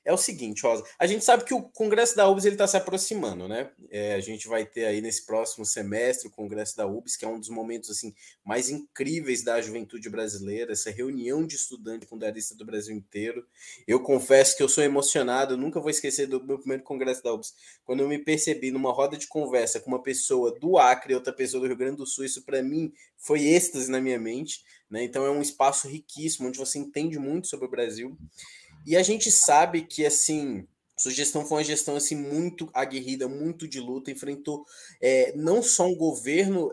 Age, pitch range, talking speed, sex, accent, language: 20-39, 130-170 Hz, 205 wpm, male, Brazilian, Portuguese